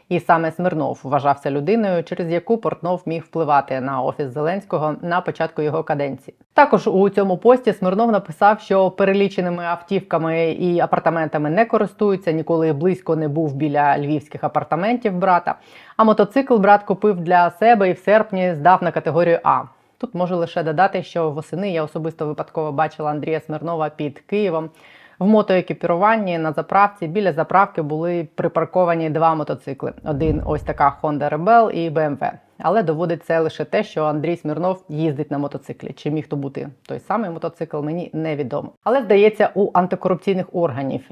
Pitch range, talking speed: 155-185 Hz, 155 wpm